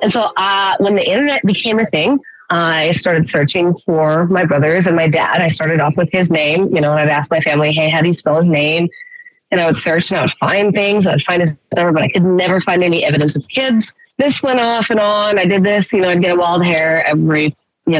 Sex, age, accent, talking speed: female, 30-49, American, 265 wpm